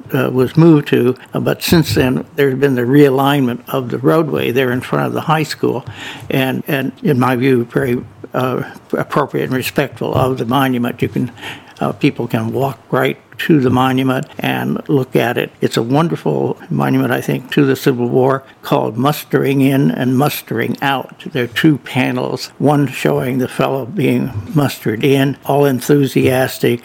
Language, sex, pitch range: English, male, 125-145 Hz